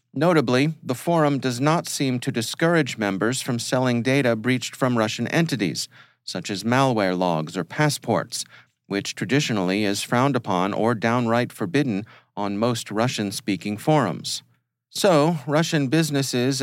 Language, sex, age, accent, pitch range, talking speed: English, male, 40-59, American, 105-140 Hz, 135 wpm